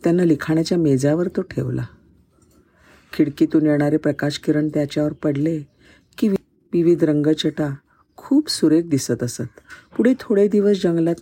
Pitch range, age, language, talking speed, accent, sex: 135-200 Hz, 50-69, Marathi, 120 wpm, native, female